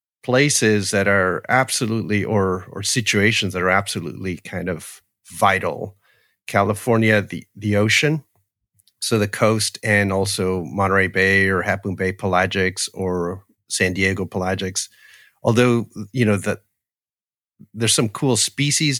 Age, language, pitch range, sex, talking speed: 40-59, English, 95-110 Hz, male, 125 wpm